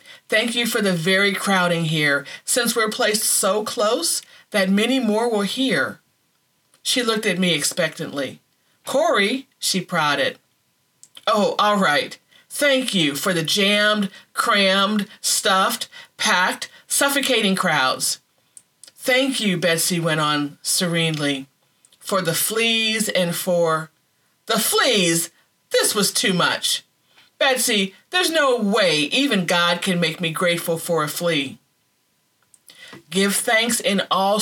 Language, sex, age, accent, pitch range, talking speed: English, female, 40-59, American, 160-215 Hz, 125 wpm